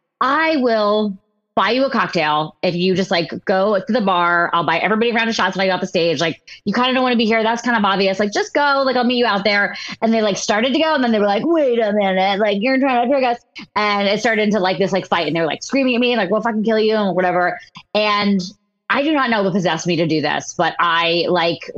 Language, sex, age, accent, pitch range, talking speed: English, female, 20-39, American, 175-225 Hz, 290 wpm